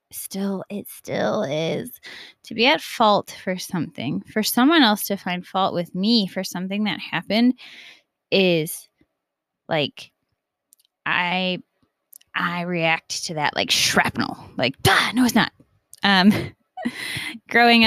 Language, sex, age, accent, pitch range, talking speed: English, female, 20-39, American, 170-210 Hz, 125 wpm